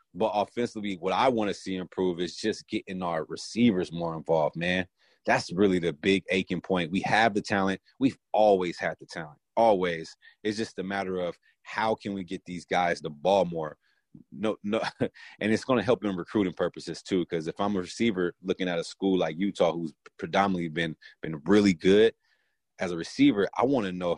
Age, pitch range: 30-49, 85-110 Hz